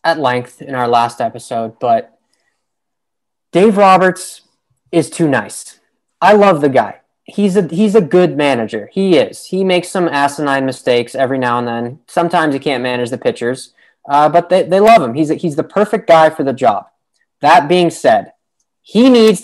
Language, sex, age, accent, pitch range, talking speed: English, male, 20-39, American, 140-215 Hz, 180 wpm